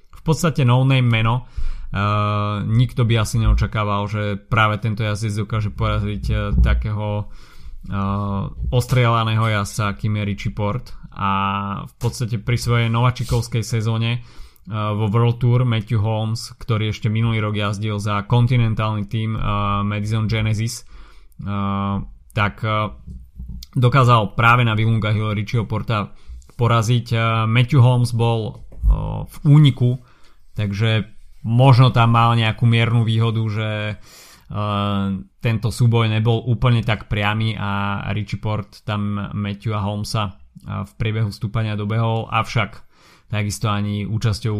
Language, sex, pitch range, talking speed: Slovak, male, 105-115 Hz, 125 wpm